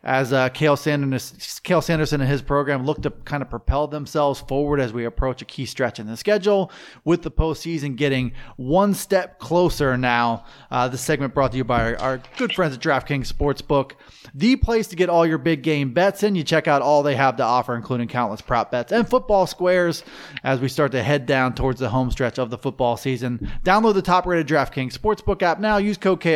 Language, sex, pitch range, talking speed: English, male, 135-180 Hz, 215 wpm